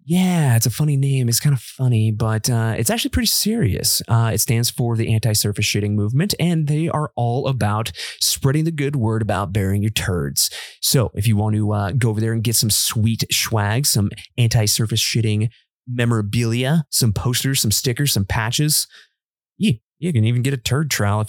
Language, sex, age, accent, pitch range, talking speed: English, male, 30-49, American, 105-130 Hz, 195 wpm